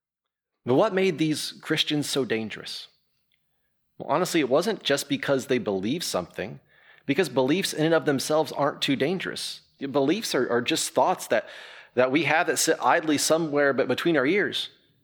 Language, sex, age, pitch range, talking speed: English, male, 30-49, 125-155 Hz, 170 wpm